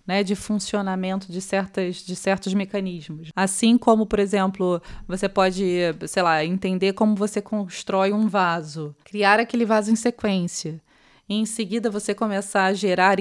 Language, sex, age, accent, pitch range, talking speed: Portuguese, female, 20-39, Brazilian, 190-225 Hz, 155 wpm